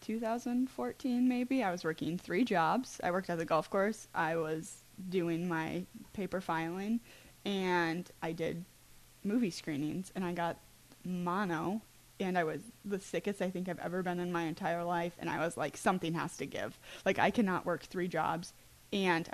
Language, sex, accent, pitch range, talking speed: English, female, American, 170-200 Hz, 185 wpm